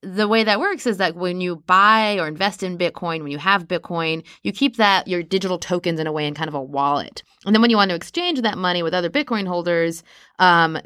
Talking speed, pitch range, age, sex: 250 wpm, 155-195 Hz, 20-39, female